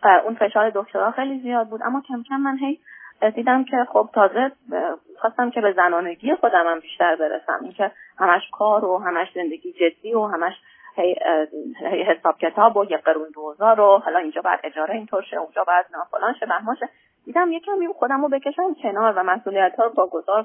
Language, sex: Persian, female